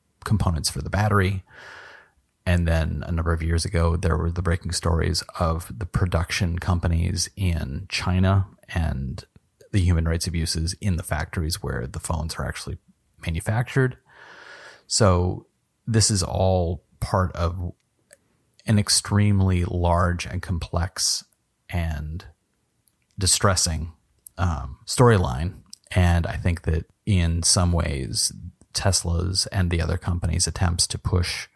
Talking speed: 125 wpm